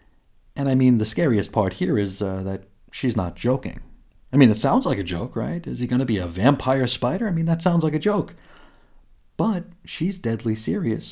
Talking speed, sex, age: 215 wpm, male, 40-59